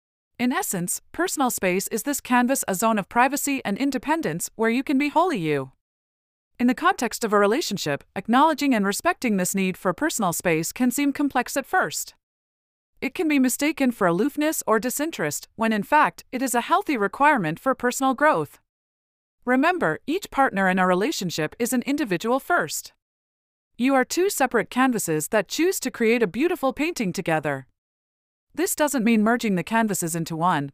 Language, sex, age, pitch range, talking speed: English, female, 30-49, 185-280 Hz, 170 wpm